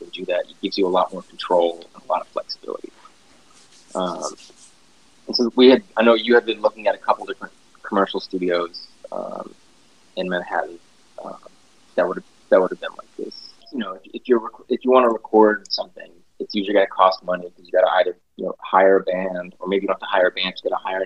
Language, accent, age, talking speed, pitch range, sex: English, American, 20-39, 230 wpm, 90-110 Hz, male